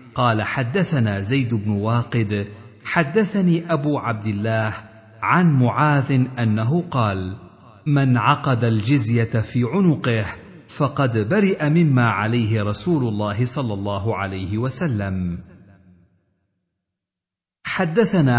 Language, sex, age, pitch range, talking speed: Arabic, male, 50-69, 110-155 Hz, 95 wpm